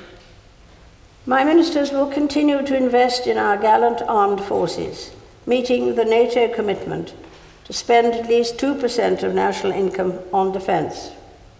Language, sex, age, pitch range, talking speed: English, female, 60-79, 170-250 Hz, 130 wpm